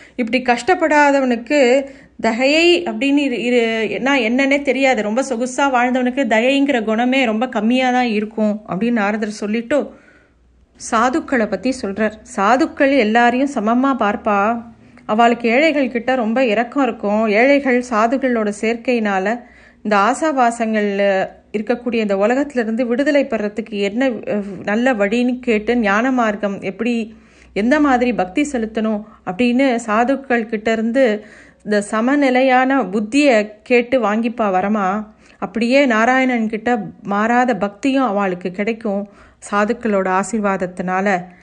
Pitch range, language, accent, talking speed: 210-260 Hz, Tamil, native, 100 wpm